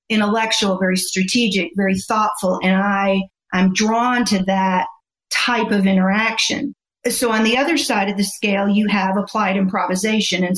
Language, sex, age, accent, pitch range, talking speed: English, female, 40-59, American, 195-235 Hz, 145 wpm